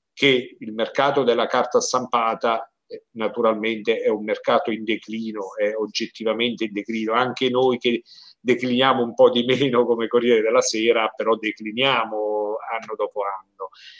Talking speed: 140 wpm